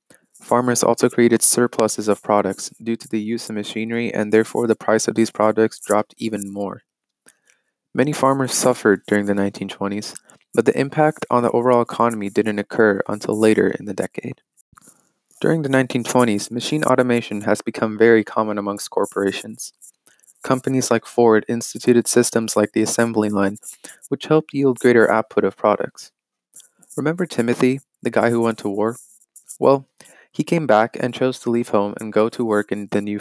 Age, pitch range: 20-39, 105-125 Hz